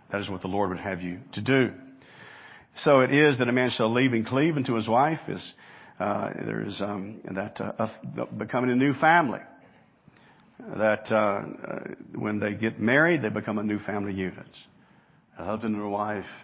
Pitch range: 100-135 Hz